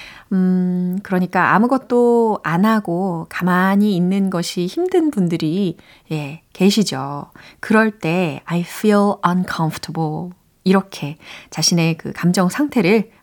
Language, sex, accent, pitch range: Korean, female, native, 170-225 Hz